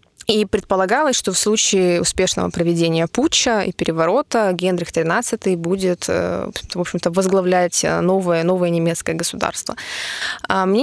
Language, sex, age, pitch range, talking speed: Russian, female, 20-39, 175-210 Hz, 105 wpm